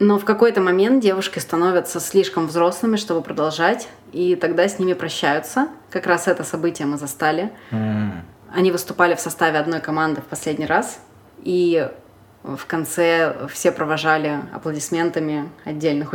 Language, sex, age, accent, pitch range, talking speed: Russian, female, 20-39, native, 155-180 Hz, 140 wpm